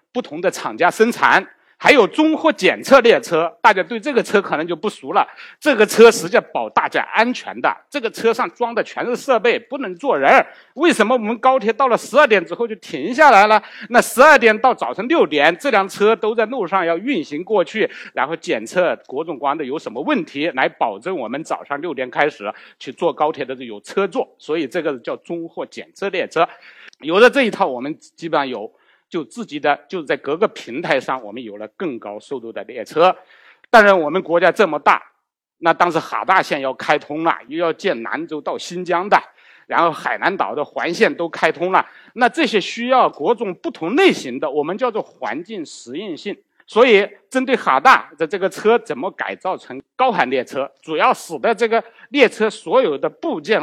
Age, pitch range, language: 60-79, 185-265 Hz, Chinese